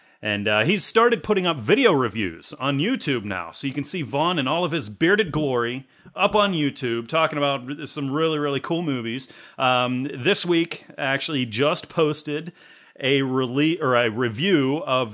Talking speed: 175 wpm